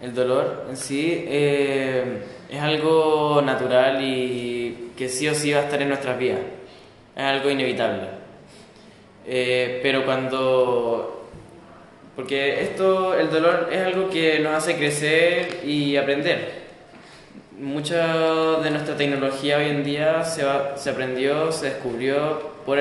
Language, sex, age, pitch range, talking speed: Swahili, male, 10-29, 135-155 Hz, 135 wpm